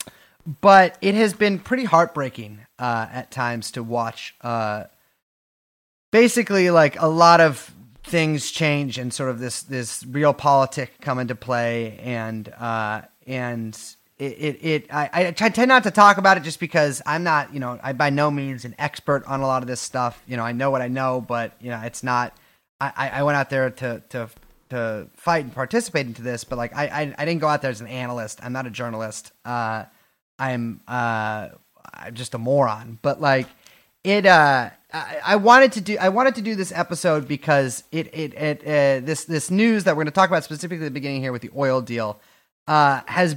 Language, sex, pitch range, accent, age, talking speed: English, male, 120-160 Hz, American, 30-49, 205 wpm